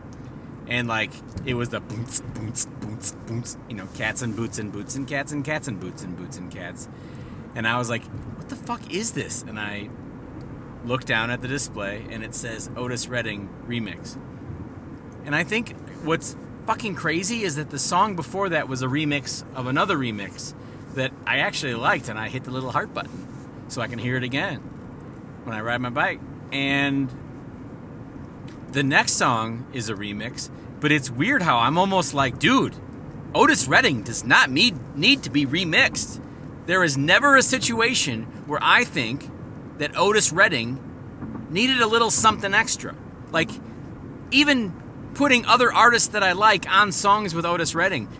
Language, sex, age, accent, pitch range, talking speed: English, male, 40-59, American, 120-185 Hz, 175 wpm